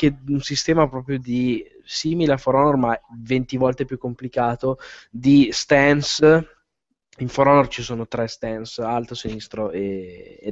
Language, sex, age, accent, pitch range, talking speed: Italian, male, 10-29, native, 120-140 Hz, 150 wpm